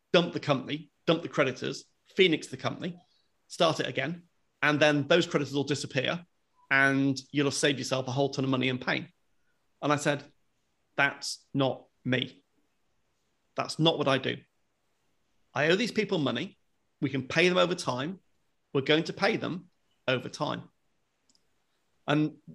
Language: English